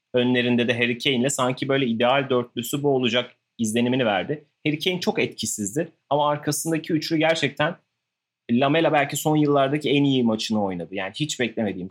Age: 30-49